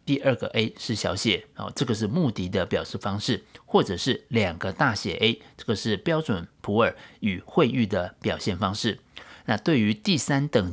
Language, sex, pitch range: Chinese, male, 100-135 Hz